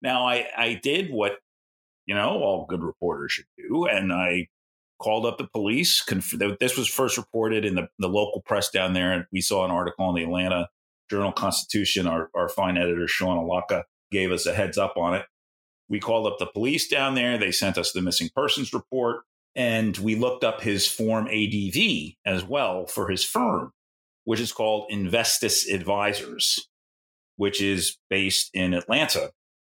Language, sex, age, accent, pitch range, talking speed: English, male, 40-59, American, 90-120 Hz, 180 wpm